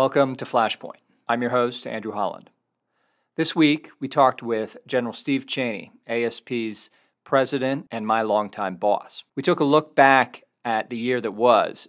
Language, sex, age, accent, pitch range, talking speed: English, male, 40-59, American, 110-130 Hz, 160 wpm